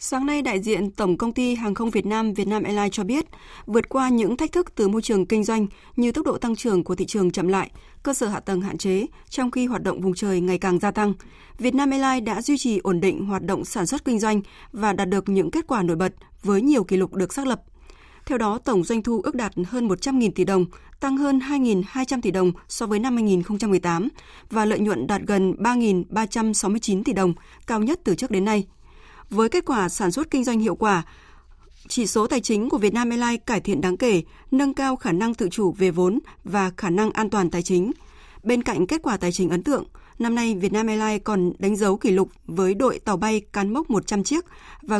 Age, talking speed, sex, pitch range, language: 20-39, 235 wpm, female, 190-245 Hz, Vietnamese